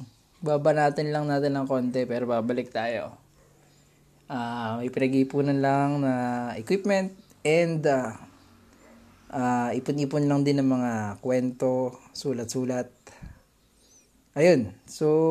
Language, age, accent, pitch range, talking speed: Filipino, 20-39, native, 125-150 Hz, 105 wpm